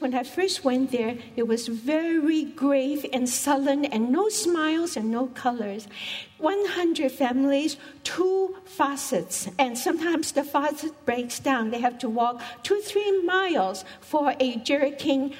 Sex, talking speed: female, 145 wpm